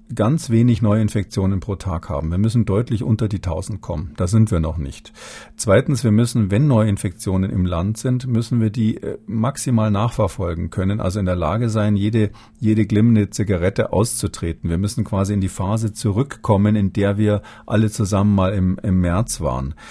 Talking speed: 180 wpm